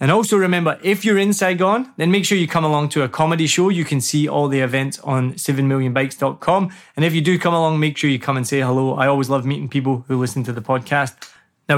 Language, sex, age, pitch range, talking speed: English, male, 20-39, 140-170 Hz, 250 wpm